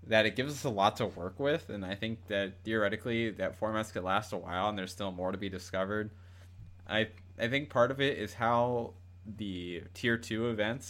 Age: 20-39